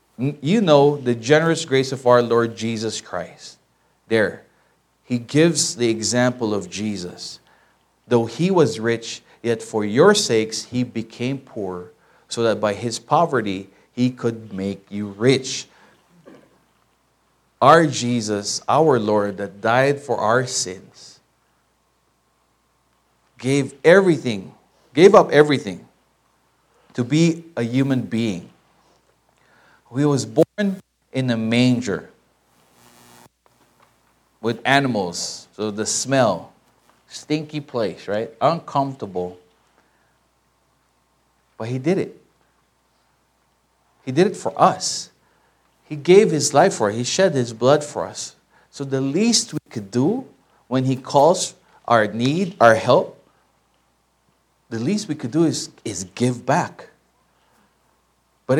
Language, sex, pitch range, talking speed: English, male, 105-145 Hz, 120 wpm